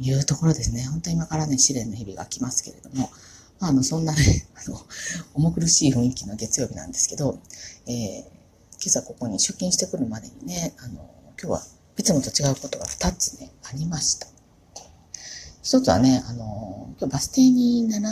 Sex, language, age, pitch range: female, Japanese, 40-59, 120-185 Hz